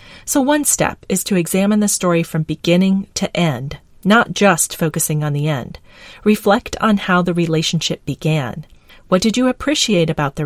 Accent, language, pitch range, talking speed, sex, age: American, English, 165-220 Hz, 170 wpm, female, 40-59